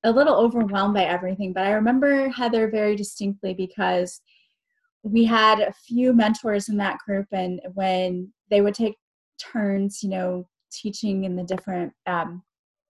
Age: 20-39